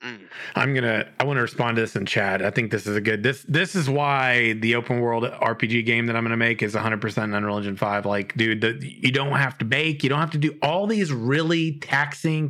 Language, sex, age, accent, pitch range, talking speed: English, male, 30-49, American, 120-155 Hz, 245 wpm